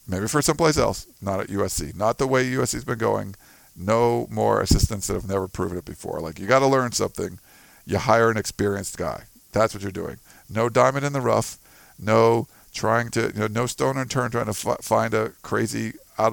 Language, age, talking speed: English, 50-69, 215 wpm